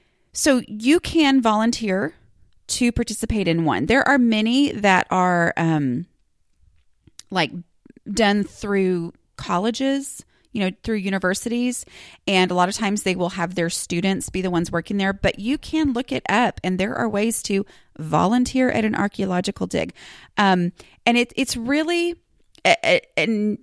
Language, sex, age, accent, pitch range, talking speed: English, female, 30-49, American, 175-235 Hz, 150 wpm